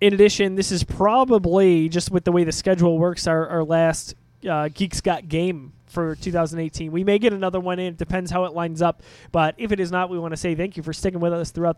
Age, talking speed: 20-39, 250 wpm